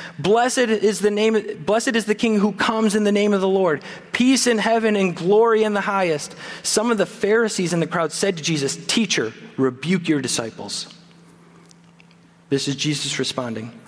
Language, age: English, 30-49